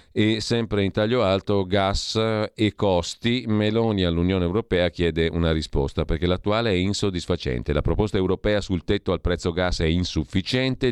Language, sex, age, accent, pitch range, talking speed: Italian, male, 40-59, native, 85-100 Hz, 155 wpm